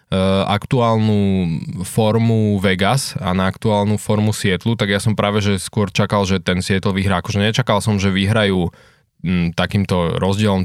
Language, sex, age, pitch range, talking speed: Slovak, male, 20-39, 95-110 Hz, 150 wpm